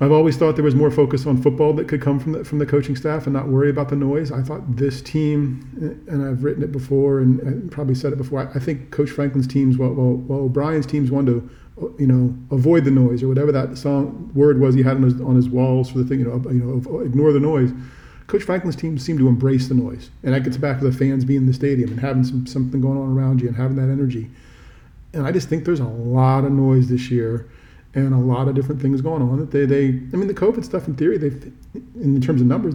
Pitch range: 130-145 Hz